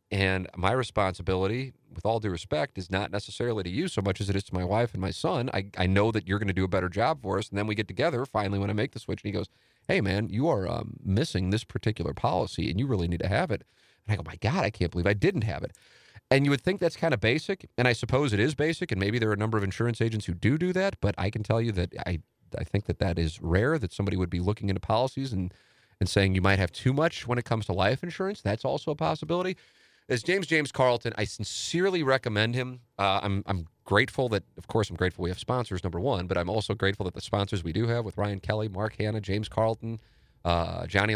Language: English